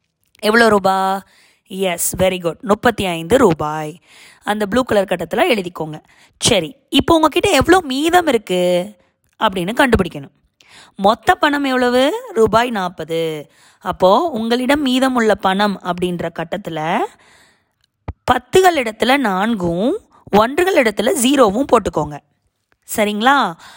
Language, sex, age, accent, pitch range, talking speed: Tamil, female, 20-39, native, 180-255 Hz, 100 wpm